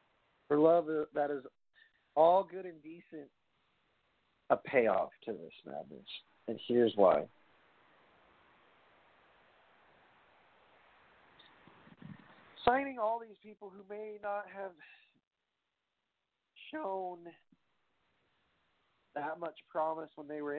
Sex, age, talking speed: male, 50-69, 90 wpm